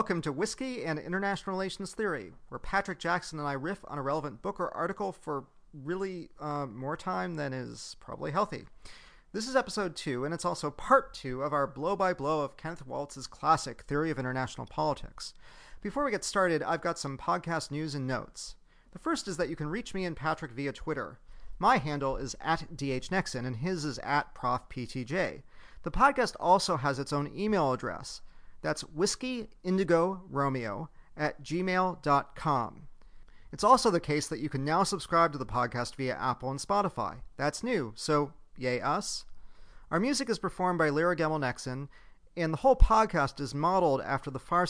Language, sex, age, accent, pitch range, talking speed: English, male, 40-59, American, 135-185 Hz, 175 wpm